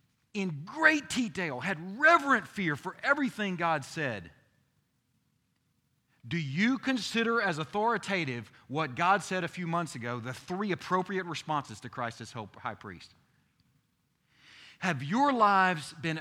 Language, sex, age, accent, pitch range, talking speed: English, male, 40-59, American, 145-210 Hz, 130 wpm